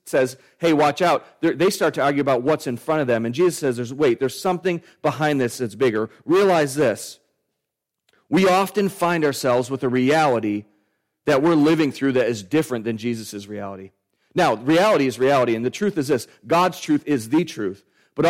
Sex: male